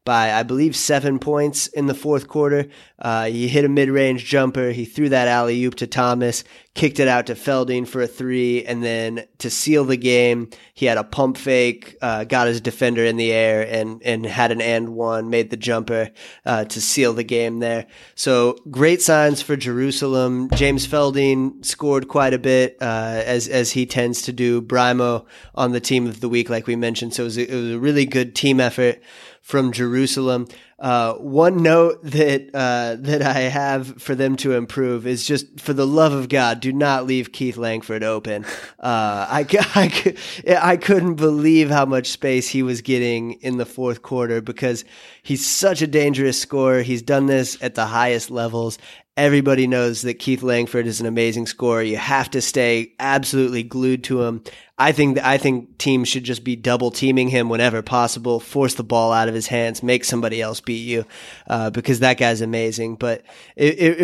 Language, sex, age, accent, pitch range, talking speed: English, male, 20-39, American, 120-135 Hz, 195 wpm